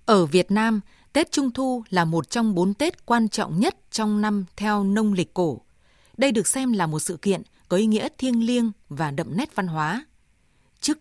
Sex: female